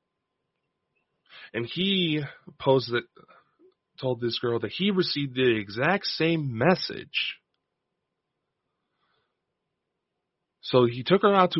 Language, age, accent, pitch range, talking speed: English, 30-49, American, 110-150 Hz, 105 wpm